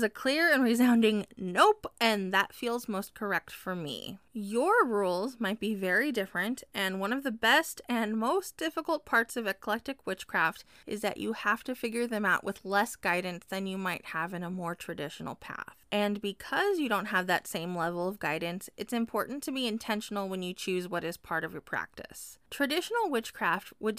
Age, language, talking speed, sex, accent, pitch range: 20-39, English, 195 wpm, female, American, 190-245 Hz